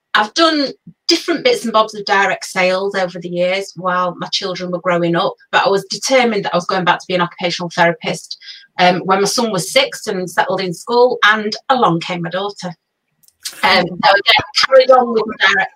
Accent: British